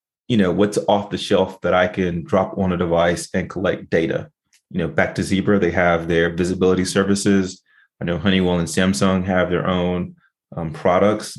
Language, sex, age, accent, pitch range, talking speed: English, male, 30-49, American, 85-95 Hz, 190 wpm